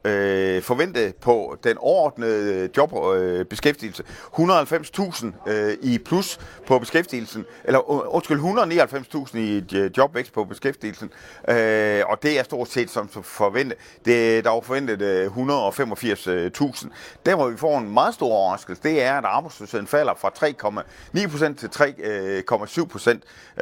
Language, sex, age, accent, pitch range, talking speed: Danish, male, 30-49, native, 100-140 Hz, 130 wpm